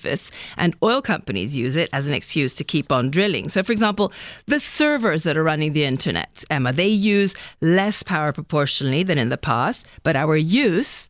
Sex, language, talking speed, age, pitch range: female, English, 190 wpm, 40-59, 160-225 Hz